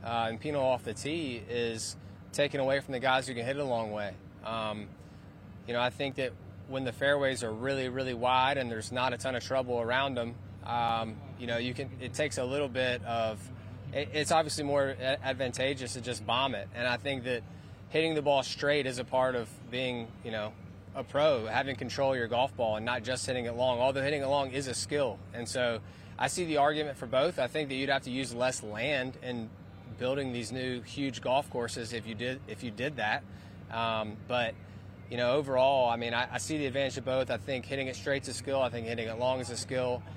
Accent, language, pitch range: American, English, 110-130 Hz